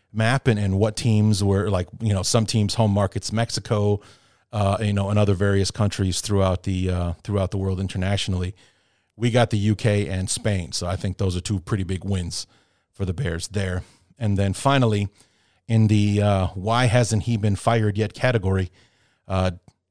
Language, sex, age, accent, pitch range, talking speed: English, male, 40-59, American, 95-115 Hz, 180 wpm